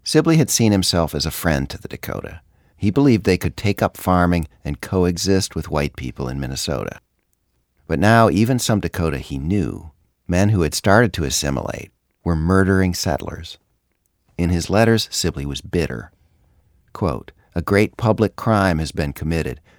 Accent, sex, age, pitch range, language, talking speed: American, male, 50-69, 80-100 Hz, English, 165 wpm